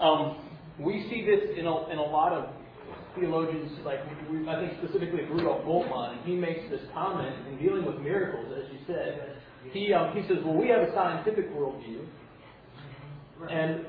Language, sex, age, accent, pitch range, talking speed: English, male, 30-49, American, 145-190 Hz, 175 wpm